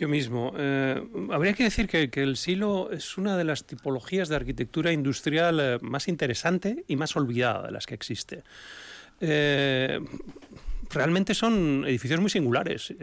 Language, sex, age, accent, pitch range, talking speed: Spanish, male, 30-49, Spanish, 125-165 Hz, 150 wpm